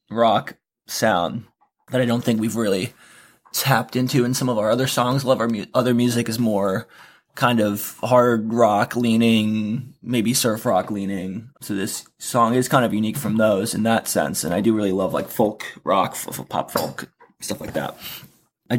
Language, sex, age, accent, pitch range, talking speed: English, male, 20-39, American, 110-125 Hz, 190 wpm